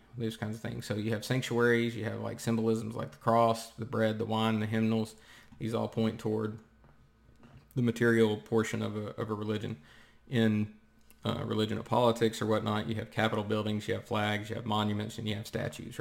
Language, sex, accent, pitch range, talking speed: English, male, American, 110-115 Hz, 200 wpm